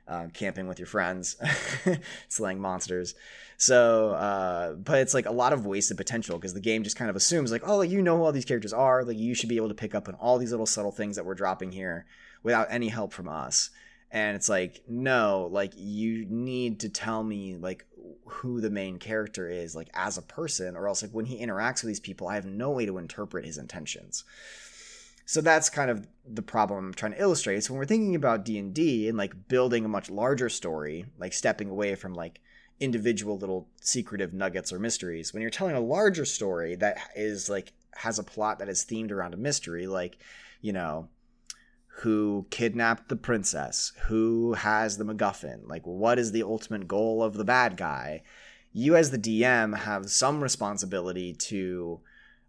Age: 20-39